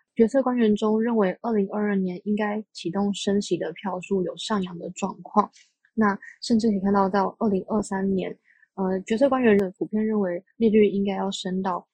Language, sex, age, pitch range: Chinese, female, 20-39, 185-215 Hz